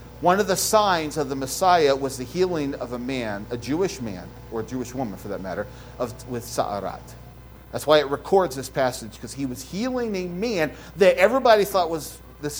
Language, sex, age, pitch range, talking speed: English, male, 50-69, 115-185 Hz, 205 wpm